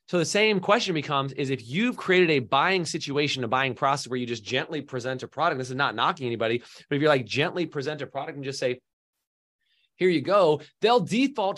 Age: 30-49